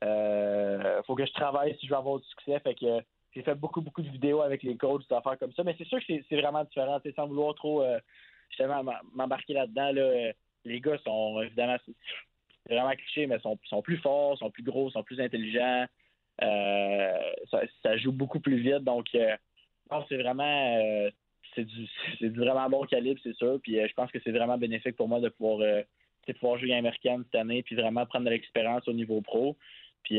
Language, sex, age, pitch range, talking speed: French, male, 20-39, 110-135 Hz, 220 wpm